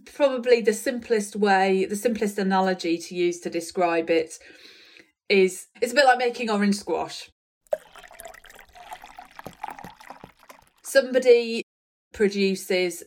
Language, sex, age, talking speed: English, female, 30-49, 100 wpm